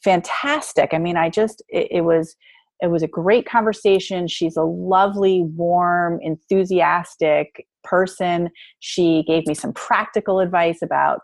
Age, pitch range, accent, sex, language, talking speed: 30-49, 165-190 Hz, American, female, English, 145 wpm